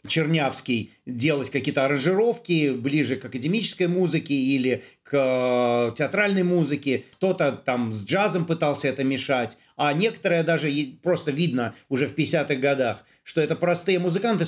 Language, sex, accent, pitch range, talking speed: Russian, male, native, 135-175 Hz, 135 wpm